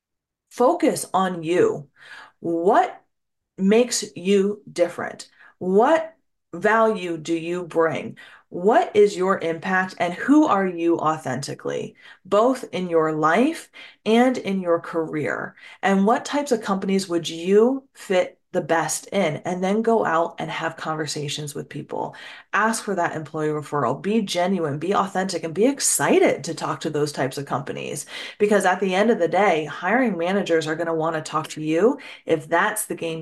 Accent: American